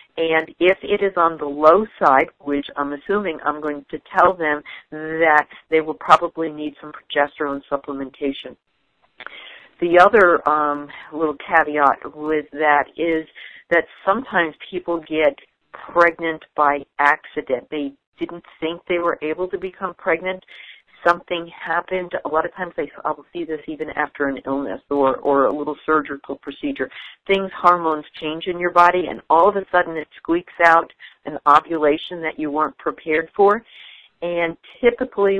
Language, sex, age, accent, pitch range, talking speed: English, female, 50-69, American, 150-175 Hz, 155 wpm